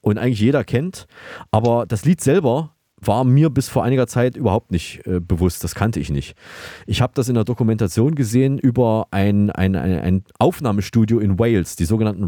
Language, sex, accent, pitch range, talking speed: German, male, German, 100-125 Hz, 190 wpm